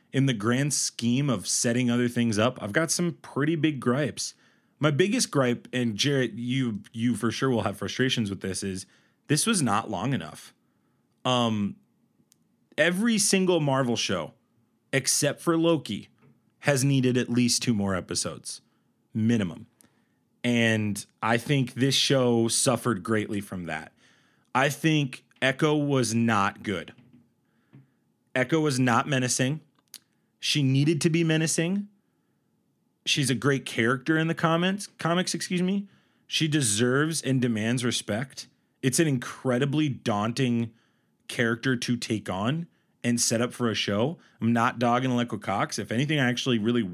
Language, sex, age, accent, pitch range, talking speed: English, male, 30-49, American, 115-150 Hz, 145 wpm